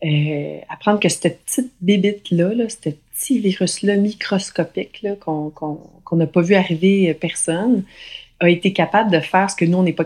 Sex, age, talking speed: female, 30-49, 180 wpm